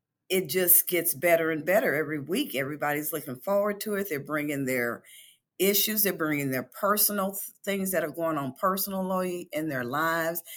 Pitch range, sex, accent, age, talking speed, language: 145-195 Hz, female, American, 40-59, 170 wpm, English